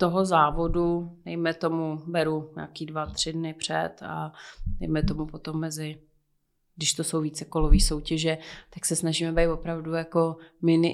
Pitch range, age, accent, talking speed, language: 155-170 Hz, 30-49, native, 155 wpm, Czech